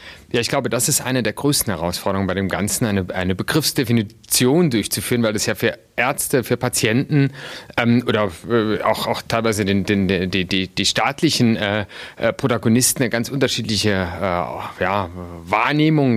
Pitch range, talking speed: 105-140 Hz, 160 wpm